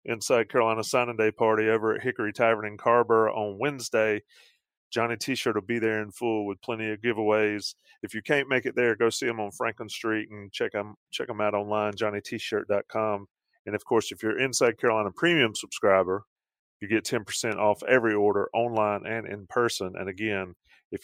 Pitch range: 100-120 Hz